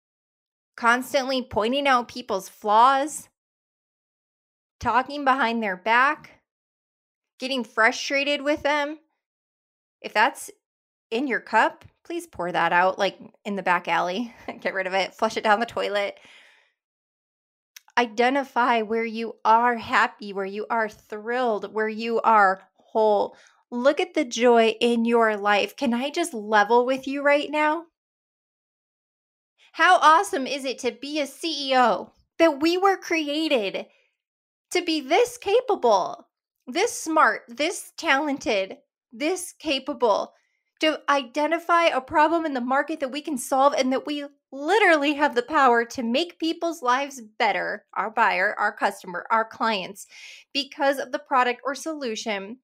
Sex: female